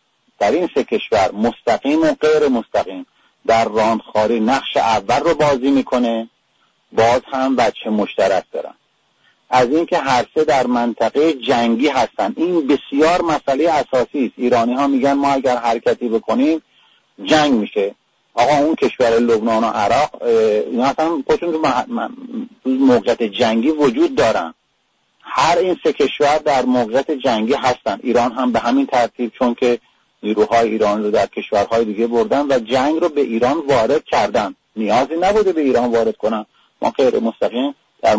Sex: male